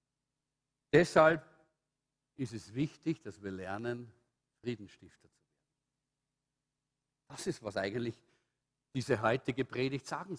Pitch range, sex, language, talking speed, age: 130-195 Hz, male, German, 105 wpm, 60-79